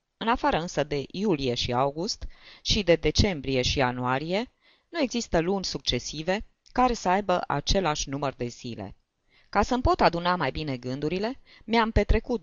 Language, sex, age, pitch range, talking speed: Romanian, female, 20-39, 145-210 Hz, 155 wpm